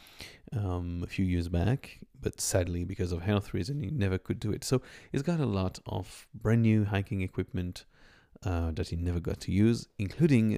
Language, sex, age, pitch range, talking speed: English, male, 30-49, 95-125 Hz, 195 wpm